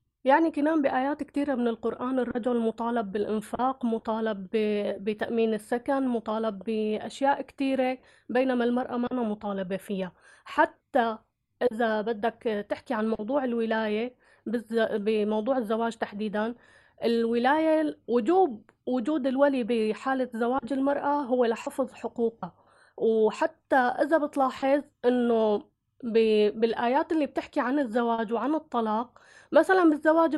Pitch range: 230-290 Hz